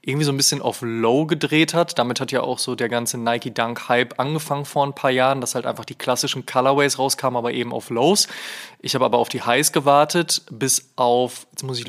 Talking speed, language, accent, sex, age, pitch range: 220 wpm, German, German, male, 20-39, 120-140 Hz